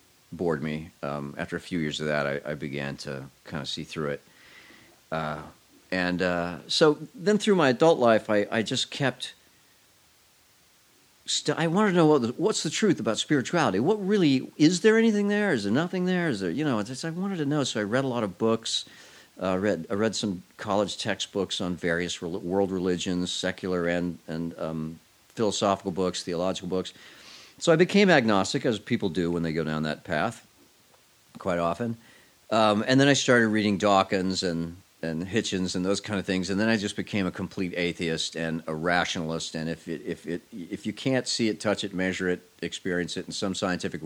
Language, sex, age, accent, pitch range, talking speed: English, male, 40-59, American, 85-120 Hz, 205 wpm